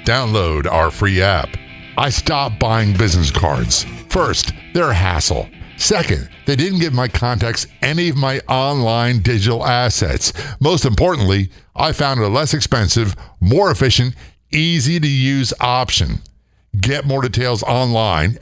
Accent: American